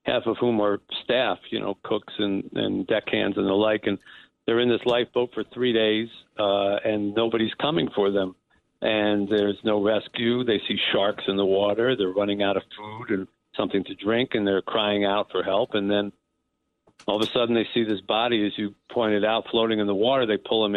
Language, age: English, 50-69